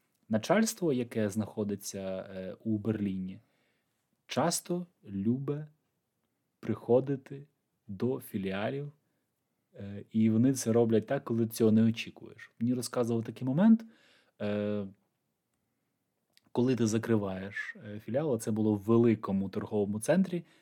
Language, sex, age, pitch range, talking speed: Ukrainian, male, 20-39, 110-140 Hz, 95 wpm